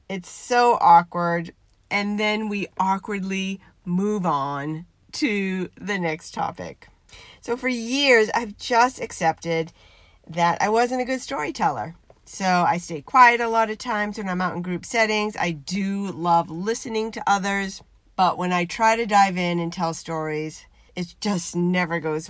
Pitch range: 170-225 Hz